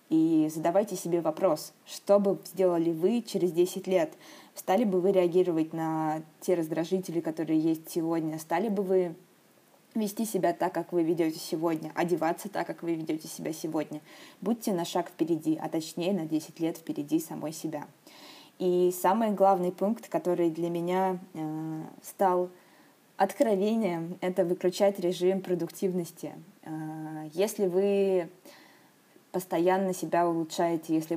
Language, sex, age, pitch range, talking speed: Russian, female, 20-39, 165-190 Hz, 135 wpm